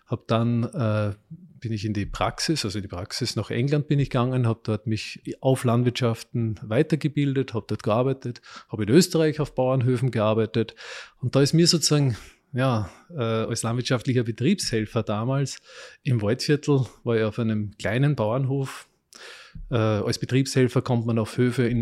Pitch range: 115-150 Hz